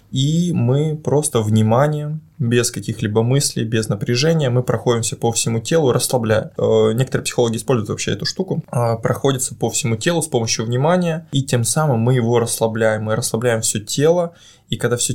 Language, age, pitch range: Russian, 20-39, 115-135 Hz